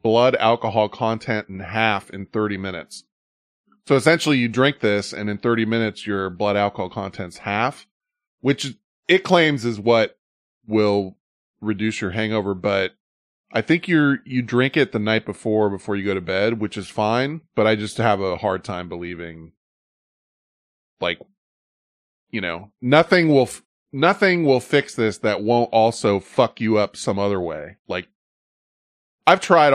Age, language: 20-39, English